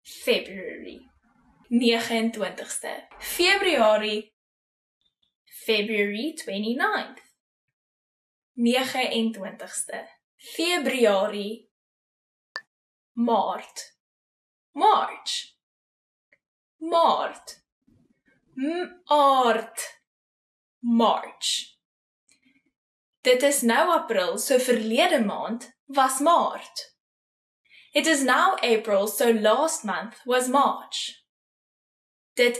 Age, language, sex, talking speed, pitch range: 10-29, English, female, 55 wpm, 225-310 Hz